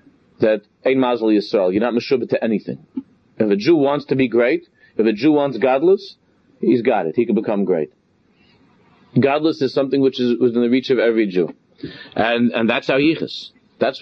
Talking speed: 195 wpm